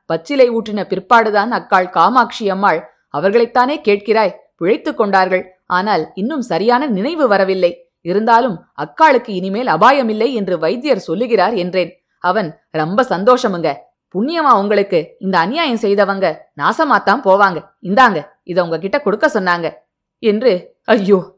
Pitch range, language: 185-235 Hz, Tamil